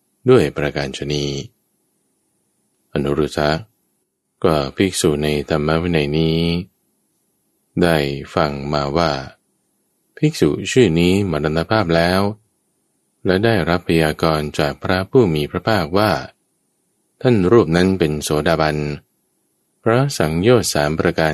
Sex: male